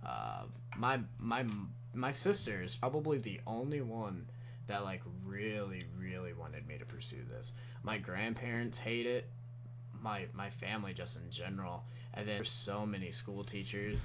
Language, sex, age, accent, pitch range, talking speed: English, male, 20-39, American, 105-125 Hz, 155 wpm